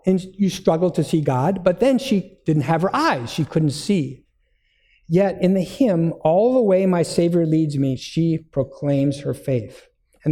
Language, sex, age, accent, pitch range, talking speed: English, male, 50-69, American, 130-175 Hz, 185 wpm